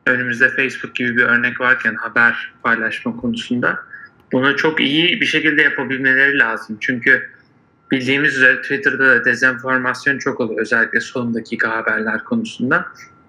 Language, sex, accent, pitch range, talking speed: Turkish, male, native, 125-155 Hz, 130 wpm